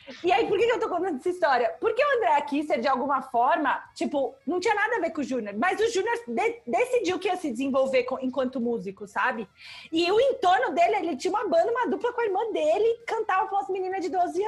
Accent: Brazilian